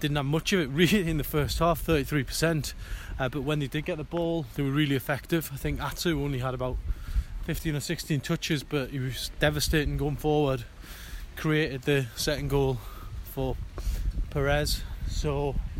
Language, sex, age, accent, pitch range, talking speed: English, male, 20-39, British, 100-145 Hz, 175 wpm